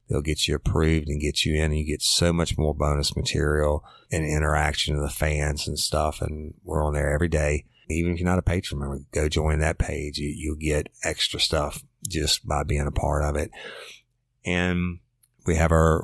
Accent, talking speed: American, 205 wpm